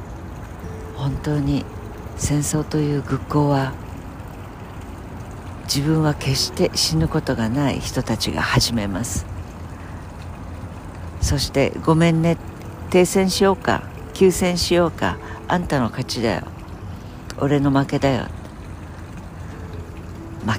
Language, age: Japanese, 60-79